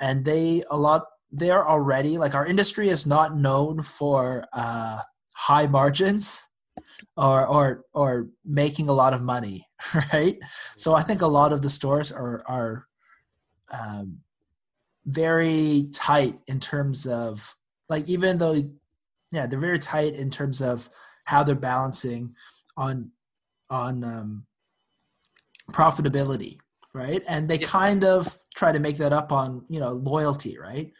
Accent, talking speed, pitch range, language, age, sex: American, 145 wpm, 130-155 Hz, English, 20-39, male